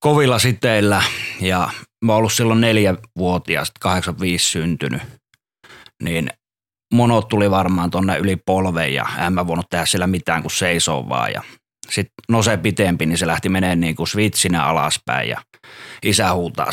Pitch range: 90-115 Hz